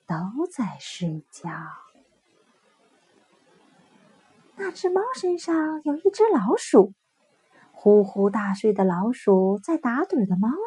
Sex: female